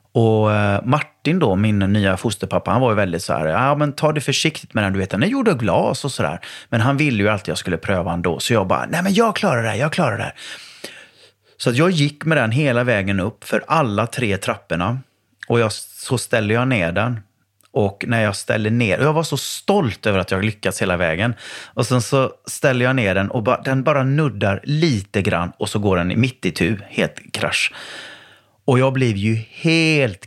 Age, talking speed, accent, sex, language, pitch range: 30-49, 230 wpm, Swedish, male, English, 100-135 Hz